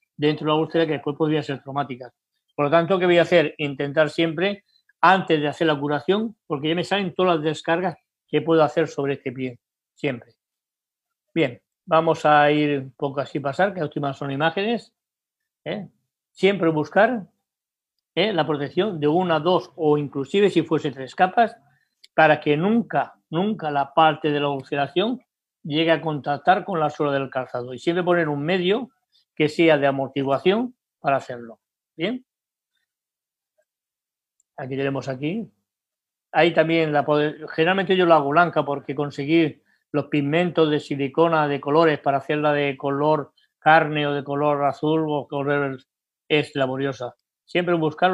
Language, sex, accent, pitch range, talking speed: Spanish, male, Spanish, 145-175 Hz, 160 wpm